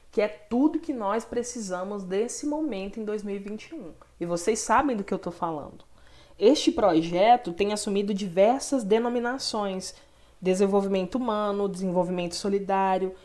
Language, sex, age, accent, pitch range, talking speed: Portuguese, female, 20-39, Brazilian, 180-230 Hz, 125 wpm